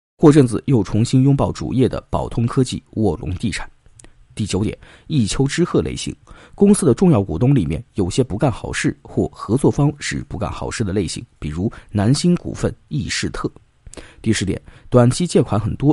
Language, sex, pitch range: Chinese, male, 95-135 Hz